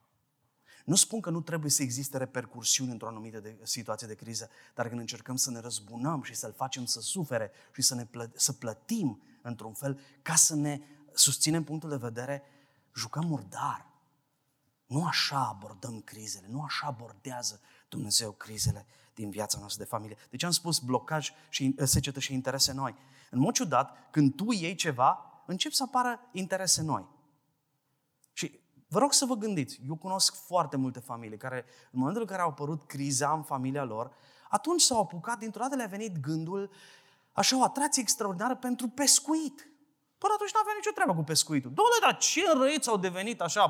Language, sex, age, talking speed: Romanian, male, 30-49, 175 wpm